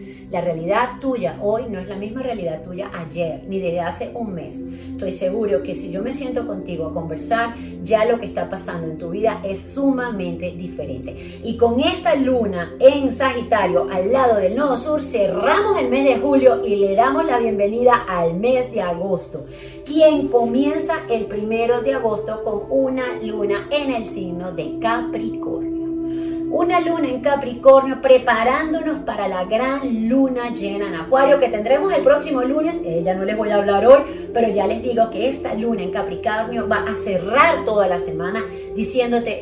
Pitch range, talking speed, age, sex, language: 190-270 Hz, 180 wpm, 30-49, female, Spanish